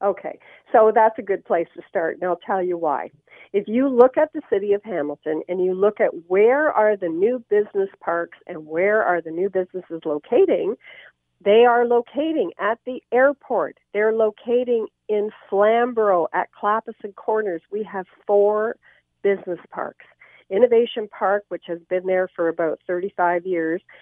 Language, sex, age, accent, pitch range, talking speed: English, female, 50-69, American, 175-235 Hz, 165 wpm